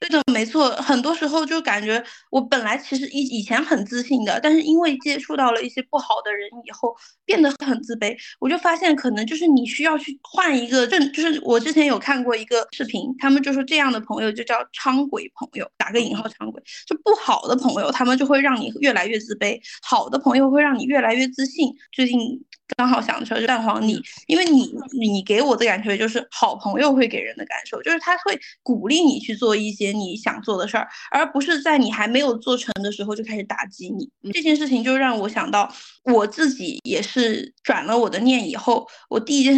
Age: 20-39